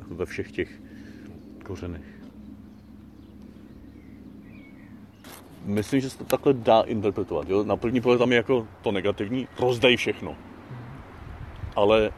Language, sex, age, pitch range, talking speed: Czech, male, 40-59, 95-120 Hz, 115 wpm